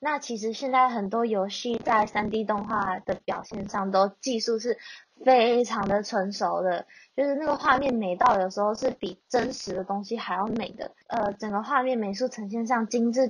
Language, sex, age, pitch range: Chinese, female, 10-29, 205-275 Hz